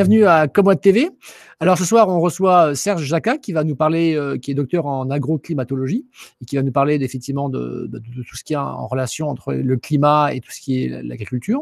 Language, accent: French, French